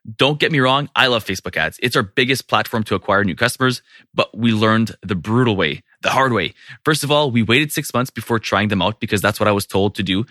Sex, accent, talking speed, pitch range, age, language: male, Canadian, 255 wpm, 105-130 Hz, 20-39, English